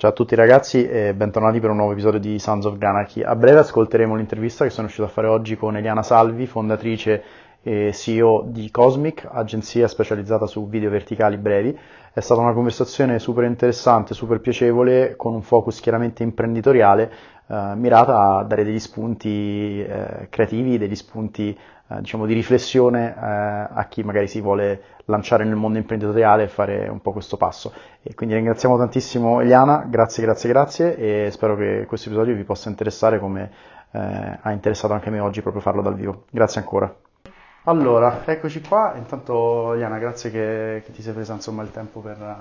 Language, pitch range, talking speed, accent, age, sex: Italian, 105-120 Hz, 175 wpm, native, 30-49, male